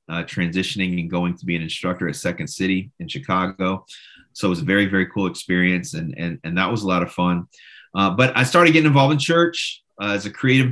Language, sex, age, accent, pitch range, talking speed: English, male, 30-49, American, 90-115 Hz, 235 wpm